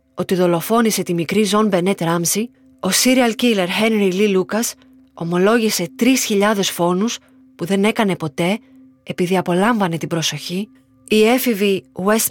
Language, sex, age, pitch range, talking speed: Greek, female, 20-39, 180-230 Hz, 125 wpm